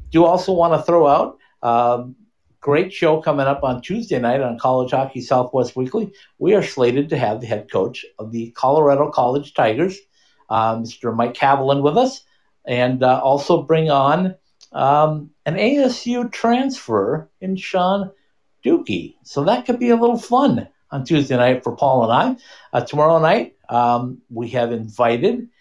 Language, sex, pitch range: English, male, 120-175 Hz